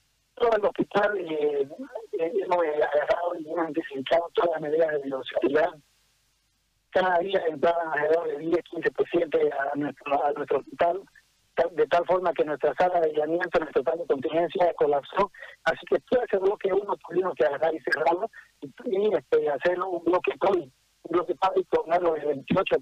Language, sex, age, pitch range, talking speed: Spanish, male, 50-69, 150-190 Hz, 175 wpm